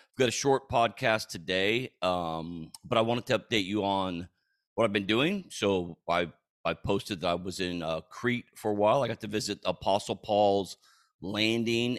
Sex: male